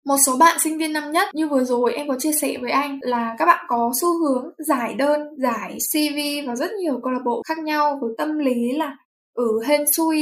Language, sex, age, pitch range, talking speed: Vietnamese, female, 10-29, 240-305 Hz, 240 wpm